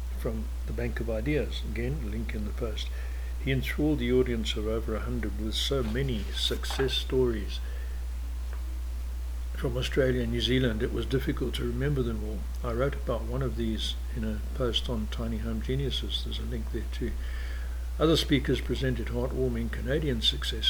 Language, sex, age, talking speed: English, male, 60-79, 170 wpm